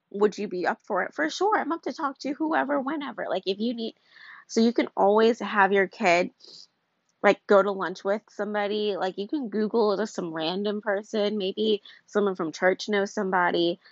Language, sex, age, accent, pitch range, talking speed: English, female, 20-39, American, 185-210 Hz, 200 wpm